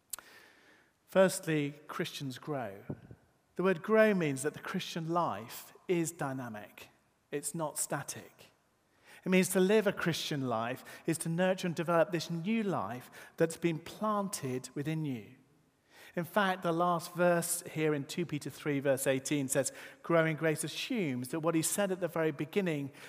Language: English